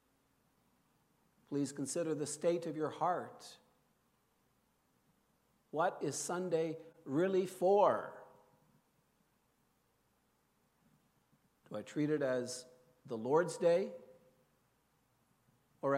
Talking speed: 80 wpm